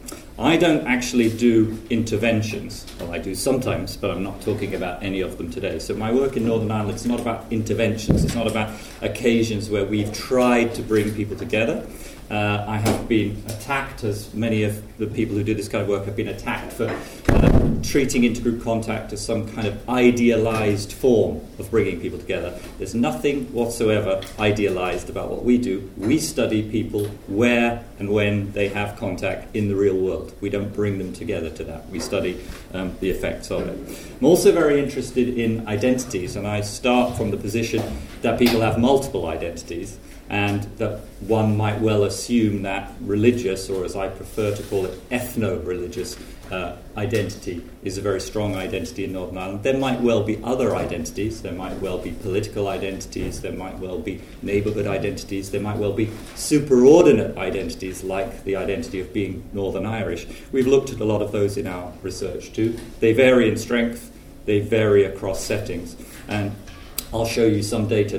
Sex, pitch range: male, 100-115 Hz